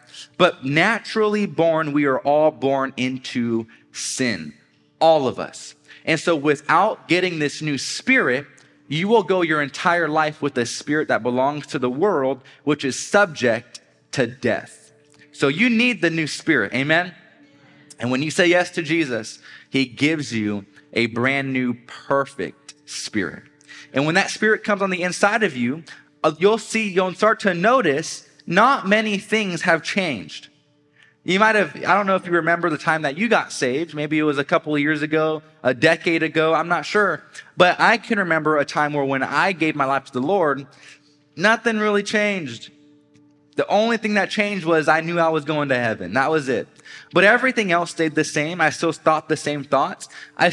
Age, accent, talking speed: 30-49, American, 185 wpm